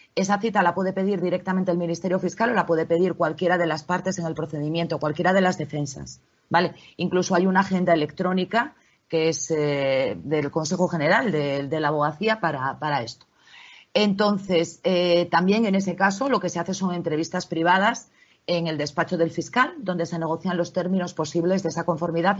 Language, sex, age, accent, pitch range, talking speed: Spanish, female, 30-49, Spanish, 165-210 Hz, 190 wpm